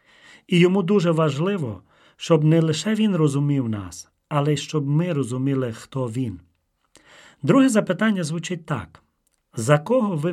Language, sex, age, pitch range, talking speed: Ukrainian, male, 40-59, 135-185 Hz, 140 wpm